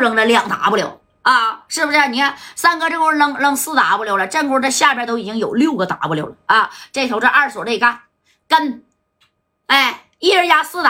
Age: 20-39